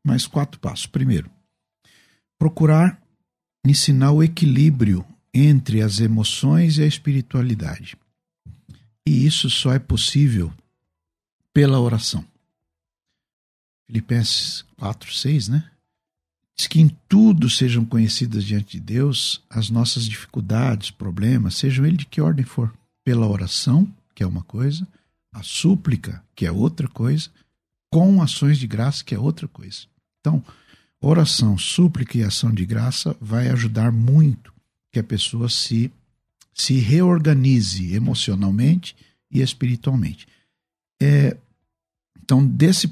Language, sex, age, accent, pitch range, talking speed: Portuguese, male, 60-79, Brazilian, 110-150 Hz, 120 wpm